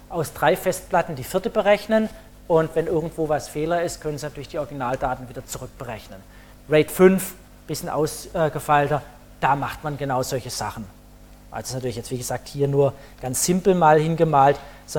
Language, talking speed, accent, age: German, 170 wpm, German, 40-59